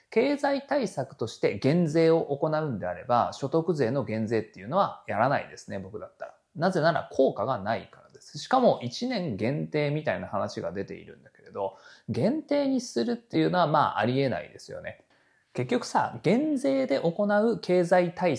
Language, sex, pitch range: Japanese, male, 130-215 Hz